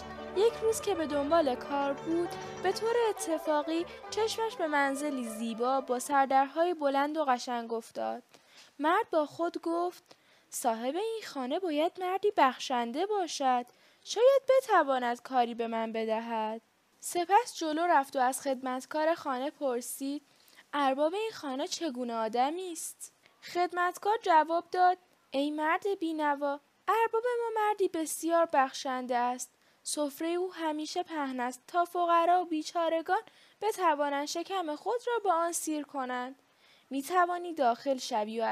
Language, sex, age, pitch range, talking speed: English, female, 10-29, 255-355 Hz, 130 wpm